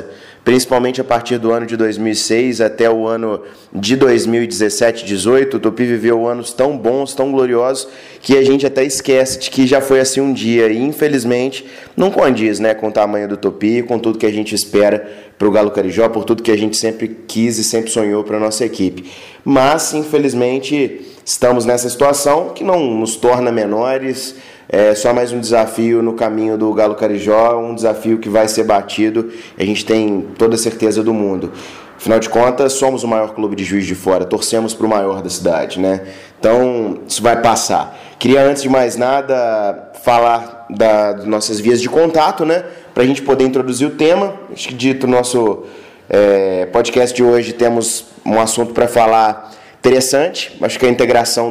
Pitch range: 110-125 Hz